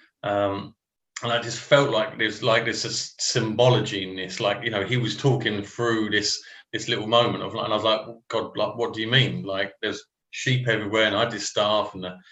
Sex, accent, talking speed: male, British, 220 wpm